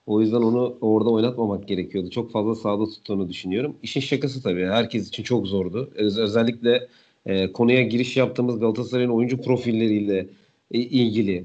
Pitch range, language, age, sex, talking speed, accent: 110-140 Hz, Turkish, 40-59, male, 150 wpm, native